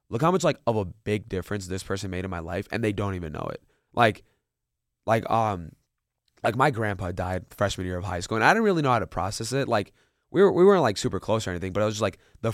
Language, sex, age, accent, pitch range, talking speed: English, male, 20-39, American, 90-115 Hz, 275 wpm